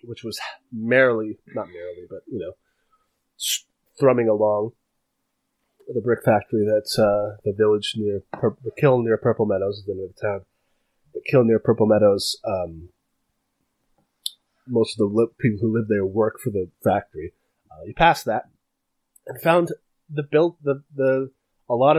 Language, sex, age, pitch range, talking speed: English, male, 30-49, 105-150 Hz, 155 wpm